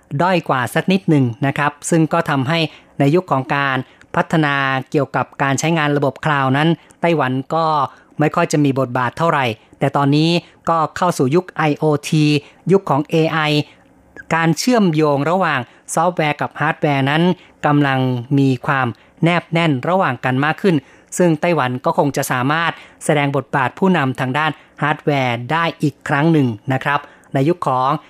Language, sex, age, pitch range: Thai, female, 30-49, 135-165 Hz